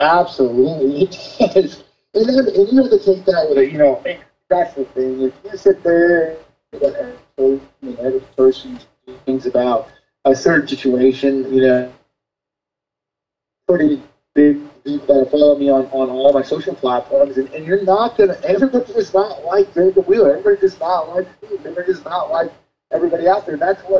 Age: 30-49